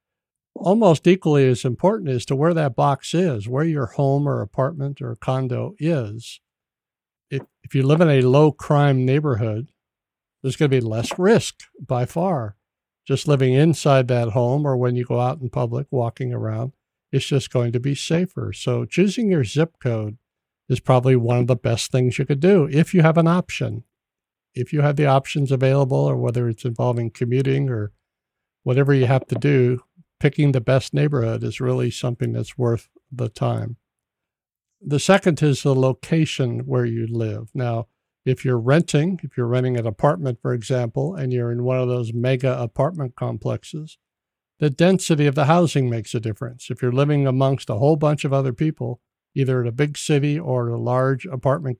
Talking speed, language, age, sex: 185 wpm, English, 60-79, male